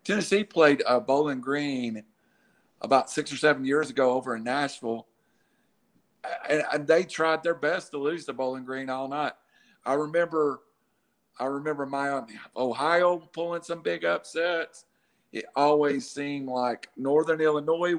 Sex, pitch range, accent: male, 135-165 Hz, American